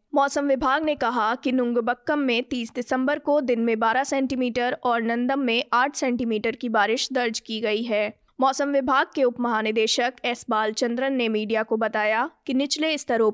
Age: 20-39